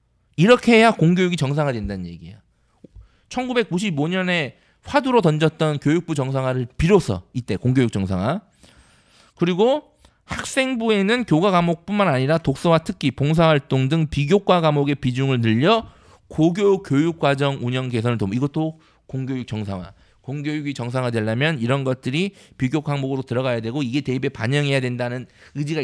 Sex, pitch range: male, 120-175 Hz